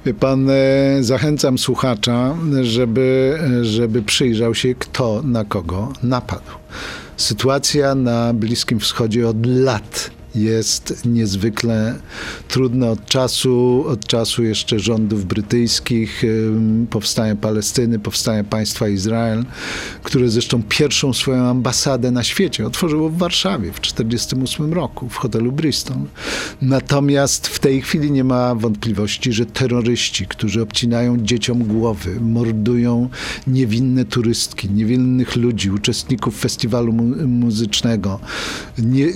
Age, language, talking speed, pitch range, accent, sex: 50-69, Polish, 110 wpm, 115-130 Hz, native, male